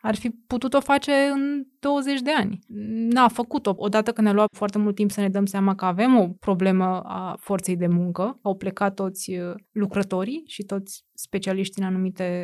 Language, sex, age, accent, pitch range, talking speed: Romanian, female, 20-39, native, 195-230 Hz, 185 wpm